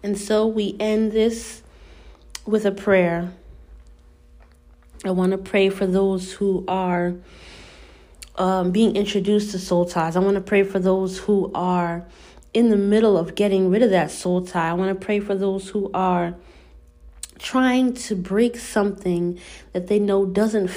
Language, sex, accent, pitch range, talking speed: English, female, American, 175-210 Hz, 160 wpm